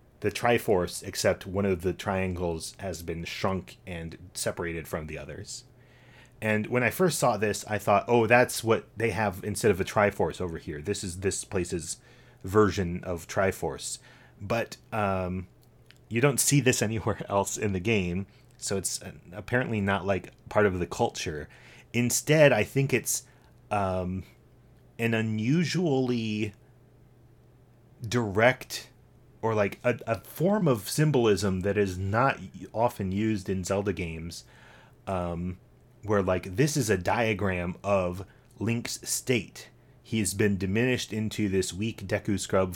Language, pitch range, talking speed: English, 95-120 Hz, 145 wpm